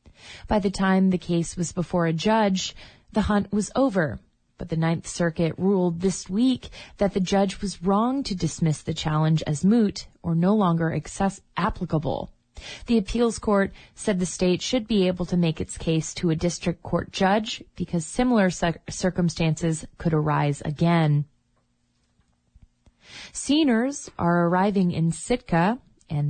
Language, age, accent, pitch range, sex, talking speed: English, 30-49, American, 160-195 Hz, female, 150 wpm